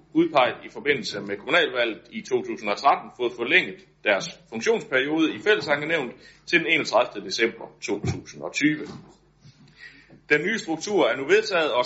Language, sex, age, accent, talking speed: Danish, male, 60-79, native, 125 wpm